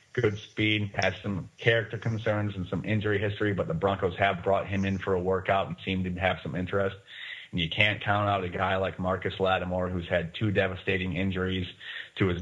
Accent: American